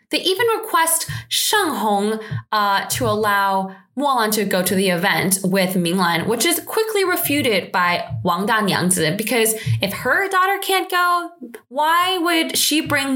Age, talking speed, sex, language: 20-39, 155 wpm, female, English